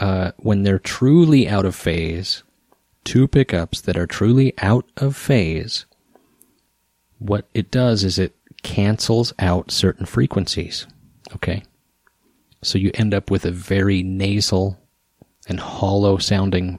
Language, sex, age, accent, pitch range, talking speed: English, male, 30-49, American, 90-110 Hz, 130 wpm